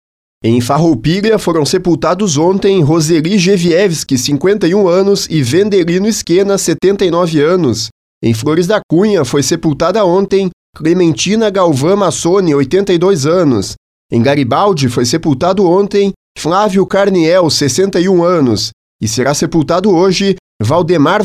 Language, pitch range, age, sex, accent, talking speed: Portuguese, 155-195 Hz, 30-49, male, Brazilian, 115 wpm